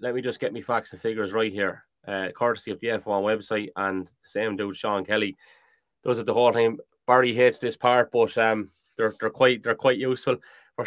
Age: 20-39